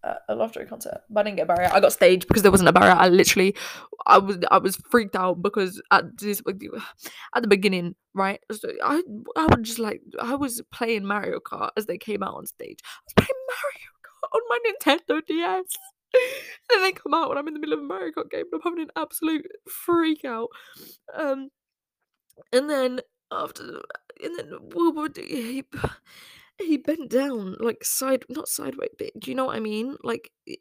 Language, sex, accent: English, female, British